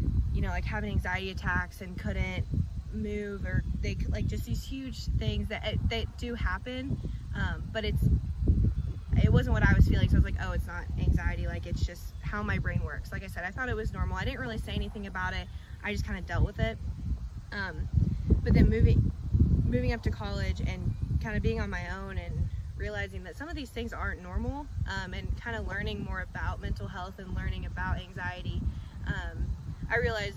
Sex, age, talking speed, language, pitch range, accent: female, 20-39, 210 wpm, English, 85-100 Hz, American